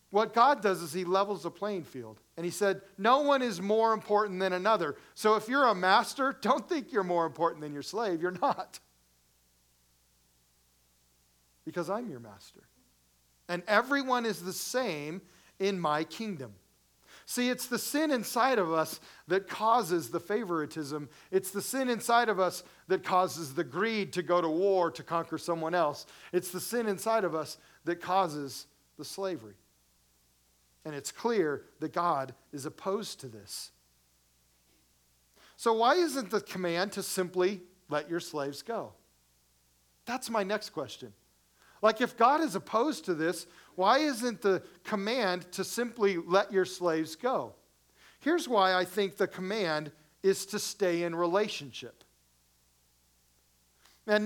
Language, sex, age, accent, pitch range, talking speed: English, male, 40-59, American, 145-210 Hz, 155 wpm